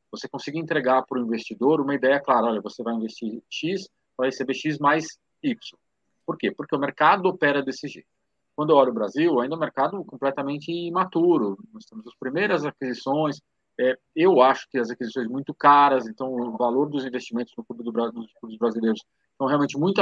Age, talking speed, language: 40-59, 190 wpm, Portuguese